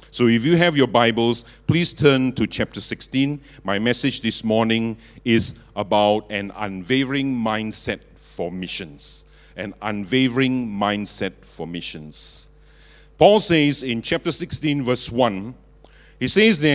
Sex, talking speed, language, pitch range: male, 135 wpm, English, 110-150 Hz